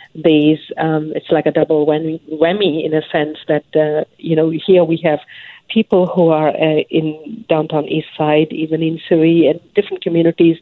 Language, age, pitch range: English, 50-69, 155-175 Hz